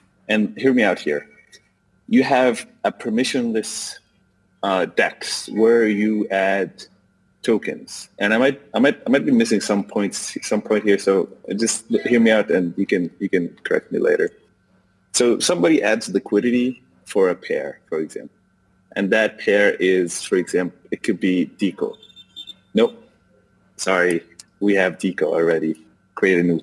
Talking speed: 160 wpm